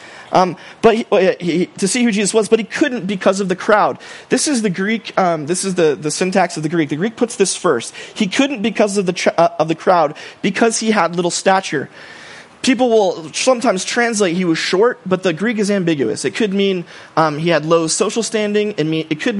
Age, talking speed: 30-49, 230 wpm